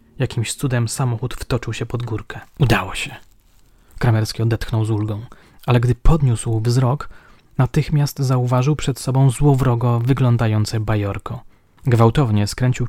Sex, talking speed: male, 120 wpm